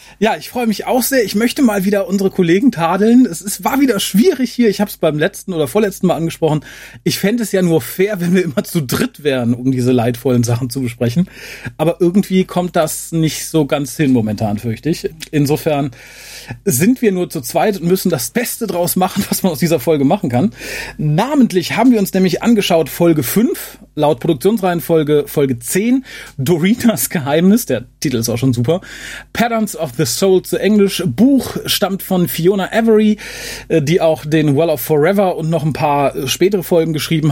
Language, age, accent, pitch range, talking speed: German, 40-59, German, 150-200 Hz, 195 wpm